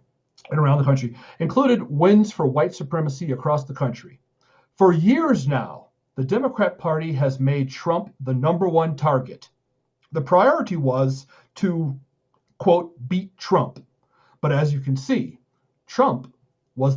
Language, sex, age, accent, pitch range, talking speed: English, male, 40-59, American, 130-175 Hz, 140 wpm